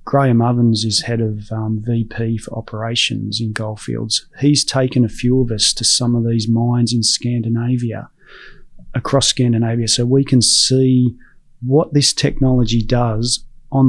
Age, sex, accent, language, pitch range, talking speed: 30-49, male, Australian, English, 115-135 Hz, 150 wpm